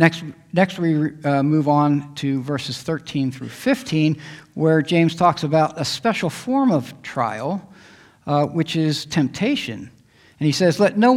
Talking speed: 155 wpm